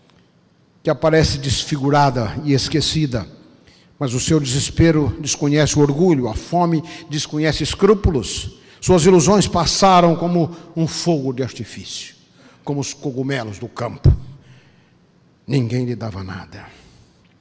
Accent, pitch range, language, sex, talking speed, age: Brazilian, 115-155 Hz, Portuguese, male, 115 wpm, 60-79